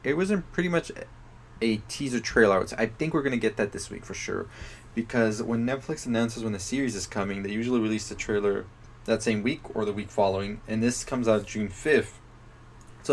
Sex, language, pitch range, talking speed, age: male, English, 105-130 Hz, 210 wpm, 20-39